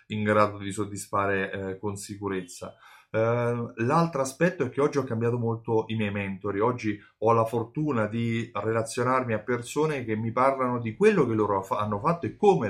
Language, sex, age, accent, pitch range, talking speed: Italian, male, 30-49, native, 105-135 Hz, 180 wpm